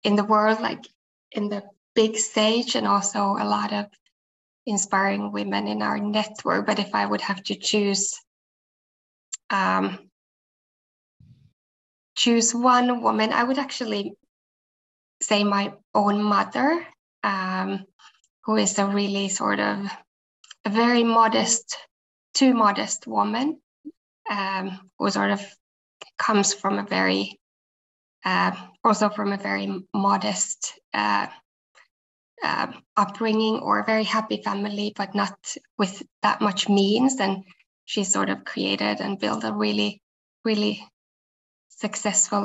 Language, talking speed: Swedish, 125 wpm